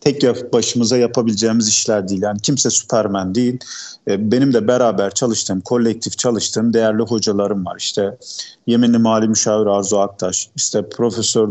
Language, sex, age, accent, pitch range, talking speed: Turkish, male, 40-59, native, 105-125 Hz, 140 wpm